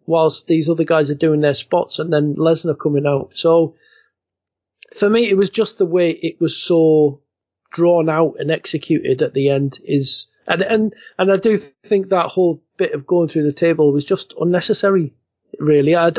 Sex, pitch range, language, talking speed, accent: male, 155-190 Hz, English, 190 wpm, British